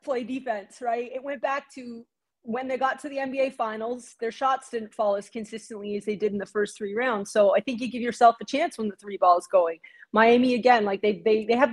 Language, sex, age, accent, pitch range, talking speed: English, female, 30-49, American, 200-240 Hz, 250 wpm